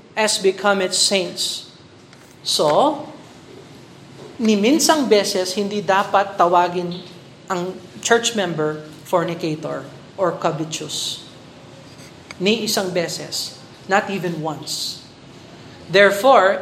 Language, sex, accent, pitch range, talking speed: Filipino, male, native, 180-230 Hz, 85 wpm